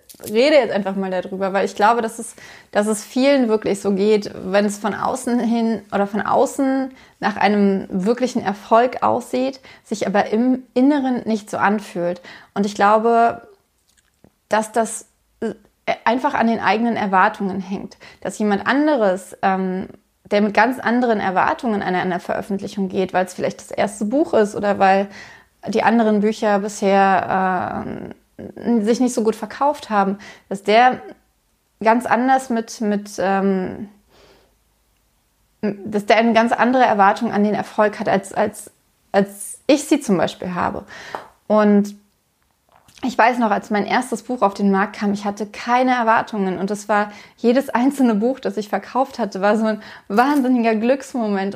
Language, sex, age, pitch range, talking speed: German, female, 20-39, 205-240 Hz, 160 wpm